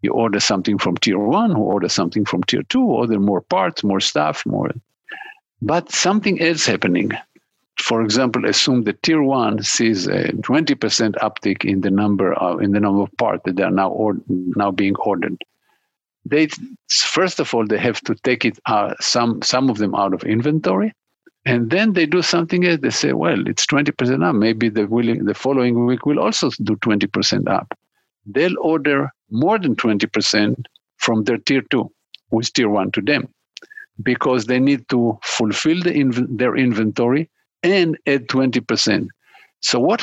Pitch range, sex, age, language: 110-150 Hz, male, 50-69, English